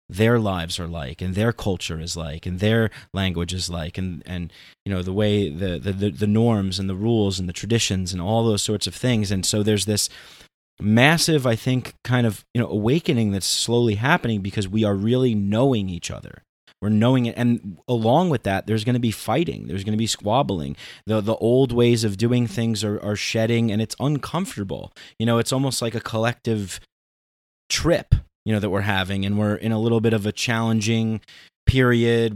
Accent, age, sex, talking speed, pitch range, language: American, 30-49, male, 205 wpm, 100-115 Hz, English